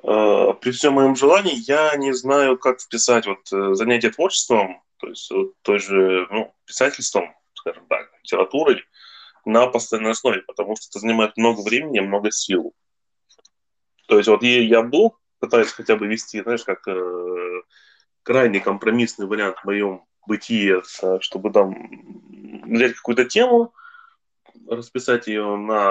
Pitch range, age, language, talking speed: 100-125 Hz, 20-39, Russian, 140 wpm